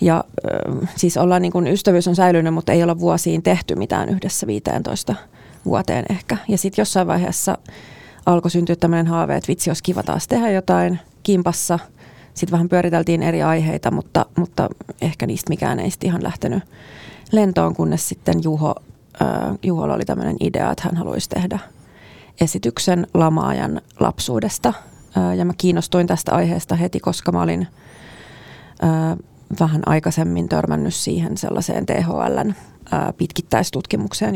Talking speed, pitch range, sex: 140 wpm, 155-180 Hz, female